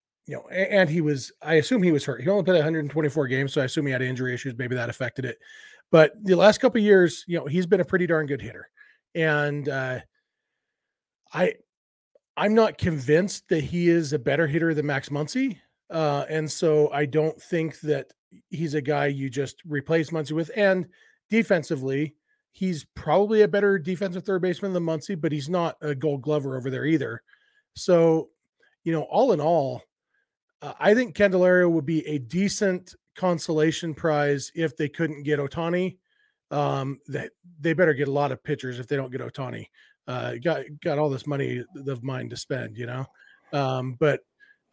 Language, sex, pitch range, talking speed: English, male, 145-185 Hz, 185 wpm